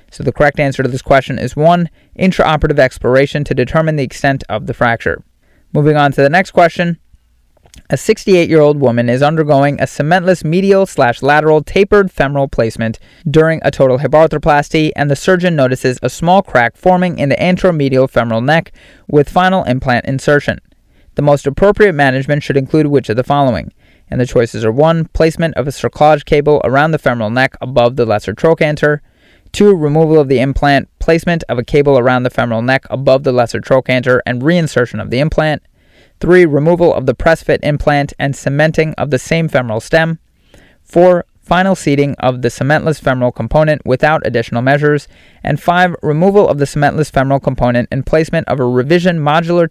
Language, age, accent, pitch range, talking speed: English, 30-49, American, 130-160 Hz, 175 wpm